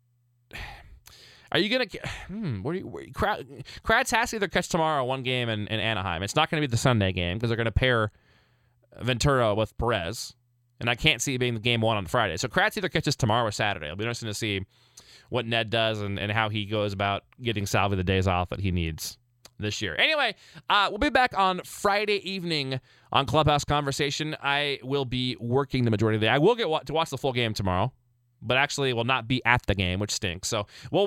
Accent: American